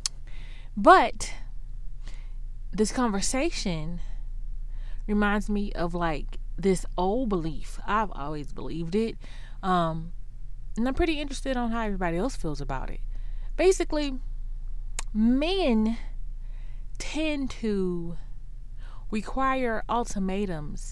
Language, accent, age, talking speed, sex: English, American, 20-39, 90 wpm, female